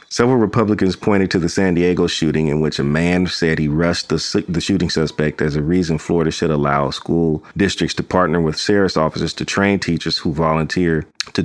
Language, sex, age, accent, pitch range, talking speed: English, male, 40-59, American, 80-95 Hz, 205 wpm